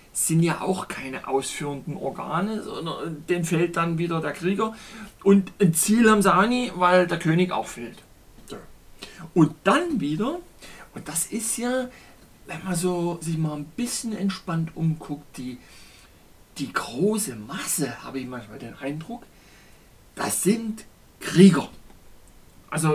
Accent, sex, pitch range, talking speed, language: German, male, 140-200 Hz, 145 wpm, German